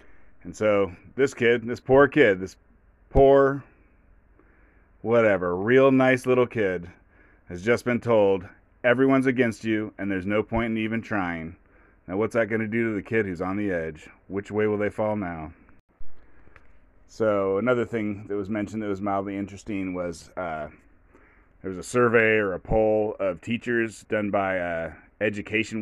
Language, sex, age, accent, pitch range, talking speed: English, male, 30-49, American, 95-115 Hz, 165 wpm